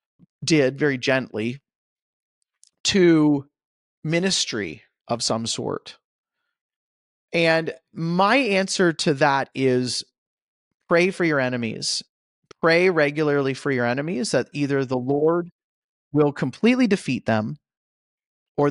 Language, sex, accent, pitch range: English, male, American, 130-175 Hz